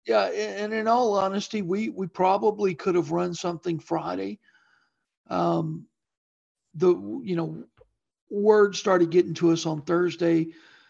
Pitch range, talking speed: 165-195 Hz, 130 wpm